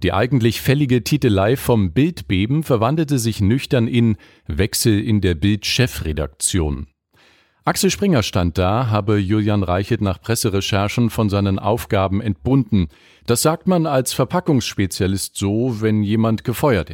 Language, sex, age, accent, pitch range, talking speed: German, male, 40-59, German, 95-135 Hz, 130 wpm